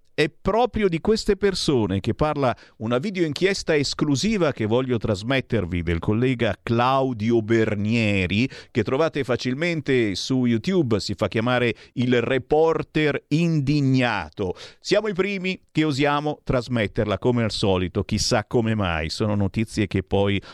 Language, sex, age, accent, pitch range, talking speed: Italian, male, 50-69, native, 100-135 Hz, 130 wpm